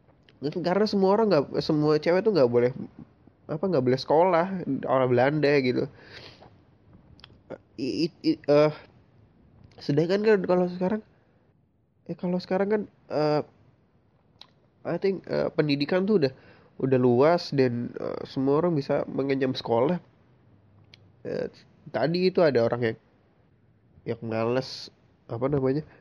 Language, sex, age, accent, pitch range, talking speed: Indonesian, male, 20-39, native, 120-160 Hz, 125 wpm